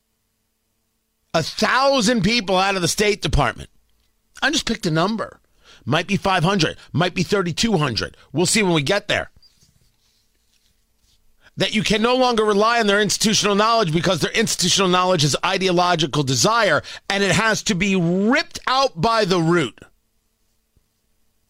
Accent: American